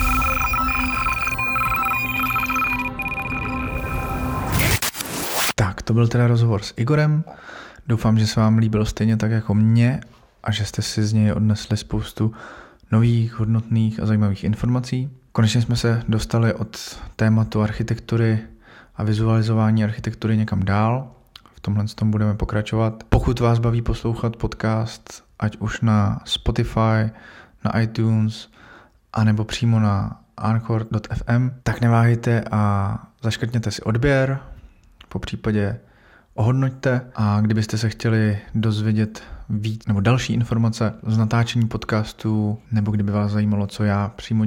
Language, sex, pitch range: Czech, male, 105-115 Hz